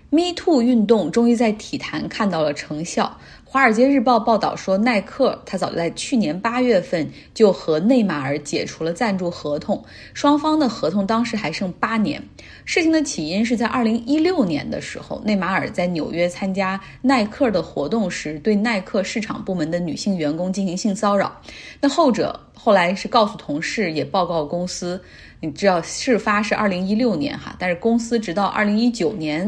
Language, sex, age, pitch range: Chinese, female, 20-39, 175-235 Hz